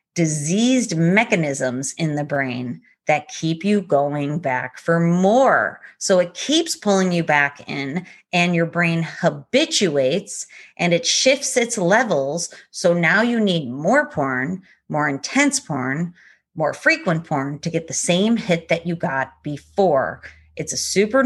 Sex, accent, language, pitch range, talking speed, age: female, American, English, 160-235 Hz, 145 wpm, 30-49